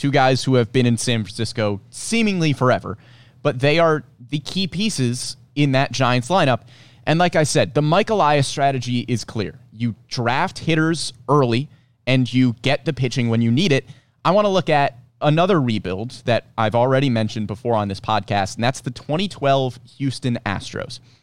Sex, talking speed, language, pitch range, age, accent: male, 180 wpm, English, 115-145 Hz, 30-49, American